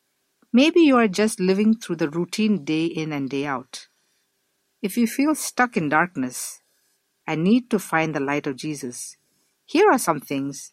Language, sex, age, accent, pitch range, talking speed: English, female, 50-69, Indian, 145-220 Hz, 175 wpm